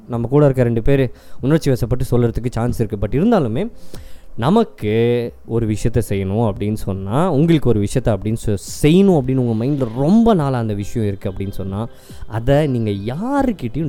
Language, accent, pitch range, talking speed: Tamil, native, 110-150 Hz, 155 wpm